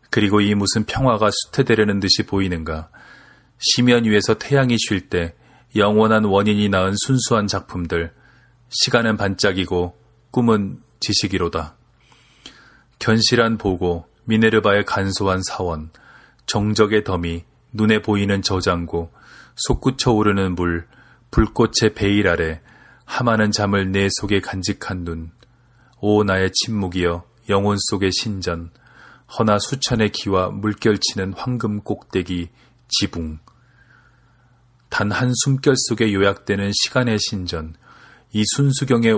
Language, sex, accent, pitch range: Korean, male, native, 95-115 Hz